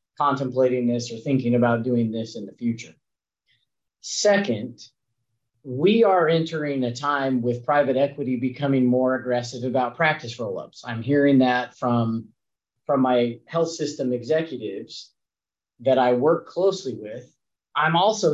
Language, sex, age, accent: English, male, 40-59, American